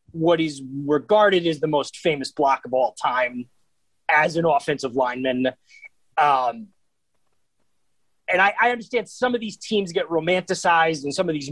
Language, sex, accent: English, male, American